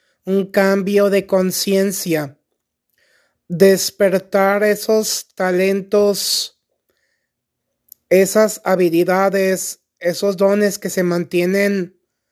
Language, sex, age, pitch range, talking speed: Spanish, male, 30-49, 180-200 Hz, 70 wpm